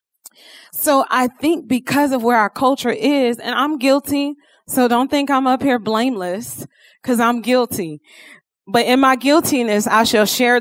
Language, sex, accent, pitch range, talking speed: English, female, American, 215-285 Hz, 165 wpm